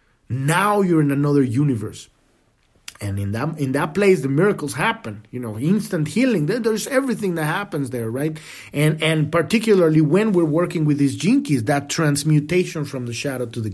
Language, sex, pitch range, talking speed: English, male, 140-185 Hz, 175 wpm